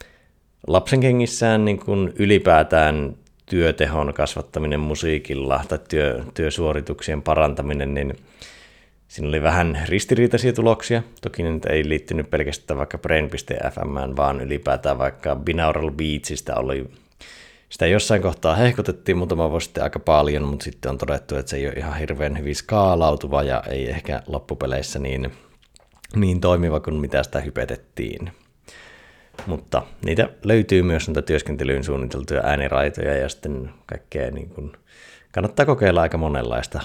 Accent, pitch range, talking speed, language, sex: native, 70-95 Hz, 120 wpm, Finnish, male